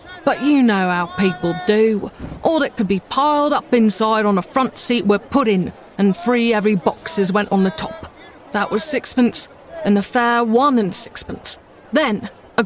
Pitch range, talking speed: 200-250 Hz, 185 wpm